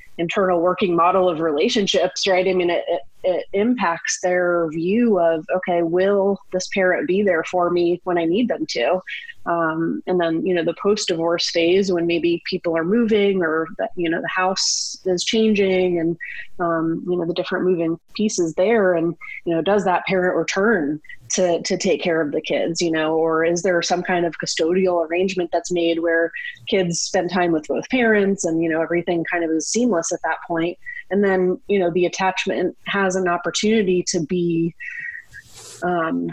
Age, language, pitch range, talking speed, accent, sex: 30-49, English, 170-200 Hz, 185 wpm, American, female